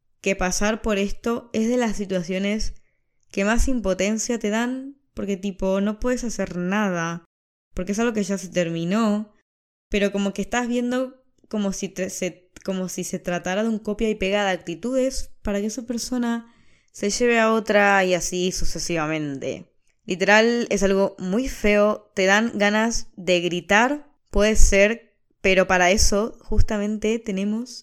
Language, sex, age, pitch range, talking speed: Spanish, female, 10-29, 180-225 Hz, 155 wpm